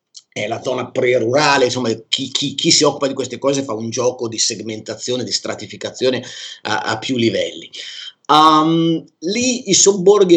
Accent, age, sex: native, 30-49, male